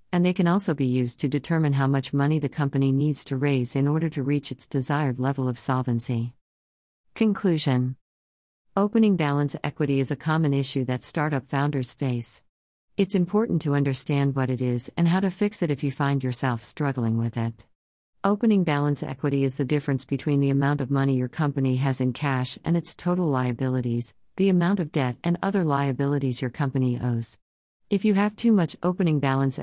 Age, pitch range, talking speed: 50-69, 130-155 Hz, 190 wpm